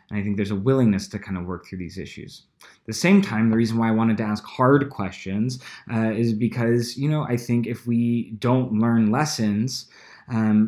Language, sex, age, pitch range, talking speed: English, male, 20-39, 105-120 Hz, 215 wpm